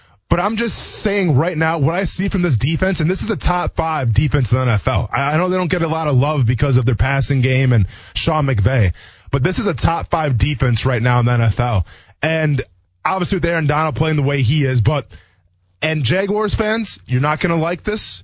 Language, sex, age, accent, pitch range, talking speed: English, male, 20-39, American, 120-175 Hz, 225 wpm